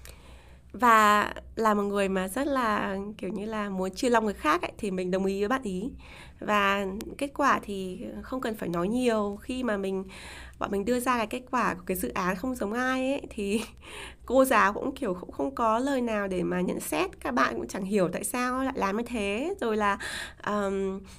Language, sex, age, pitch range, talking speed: Vietnamese, female, 20-39, 190-255 Hz, 220 wpm